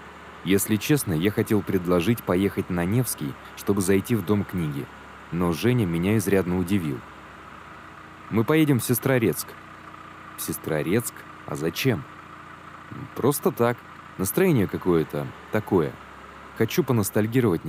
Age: 20-39